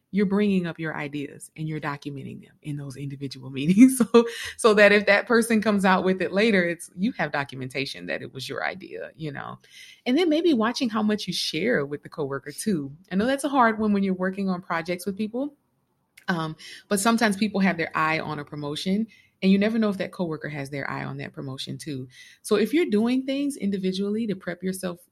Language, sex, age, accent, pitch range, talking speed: English, female, 30-49, American, 170-230 Hz, 220 wpm